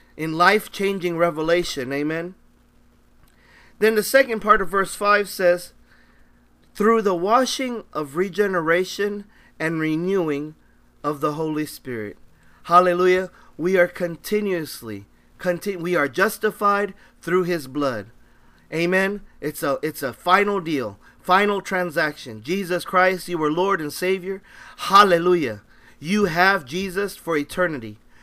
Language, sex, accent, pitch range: Japanese, male, American, 155-200 Hz